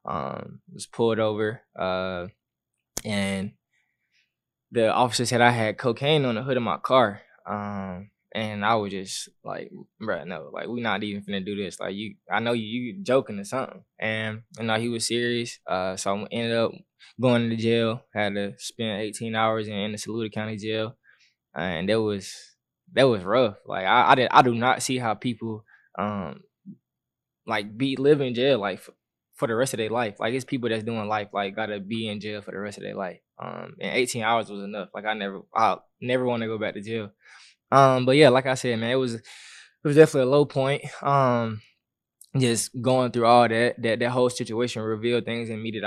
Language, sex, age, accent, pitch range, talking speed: English, male, 10-29, American, 105-120 Hz, 210 wpm